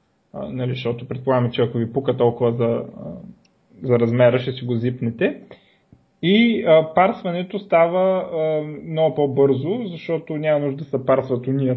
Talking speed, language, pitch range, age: 140 wpm, Bulgarian, 130-170 Hz, 20-39